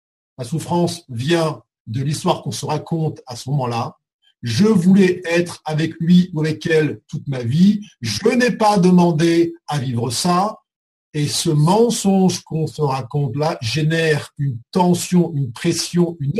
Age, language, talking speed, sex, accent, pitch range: 50-69, French, 155 wpm, male, French, 145-190 Hz